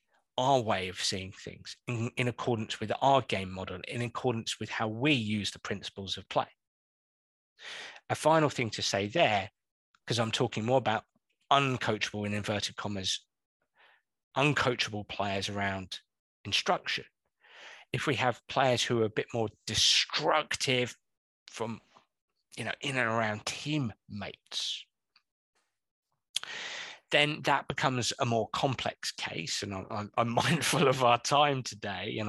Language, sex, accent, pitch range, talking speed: English, male, British, 105-130 Hz, 140 wpm